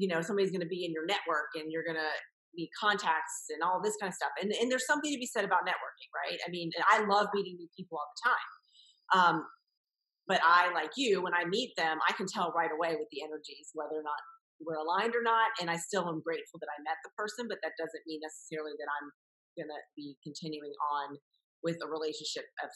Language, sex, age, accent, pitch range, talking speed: English, female, 30-49, American, 160-220 Hz, 240 wpm